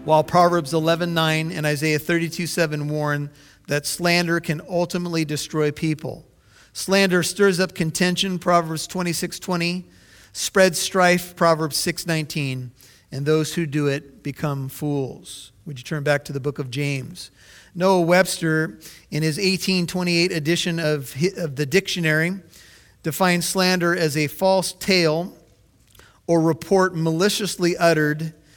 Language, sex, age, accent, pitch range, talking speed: English, male, 40-59, American, 145-175 Hz, 125 wpm